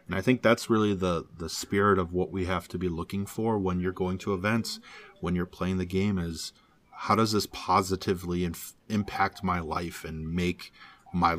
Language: English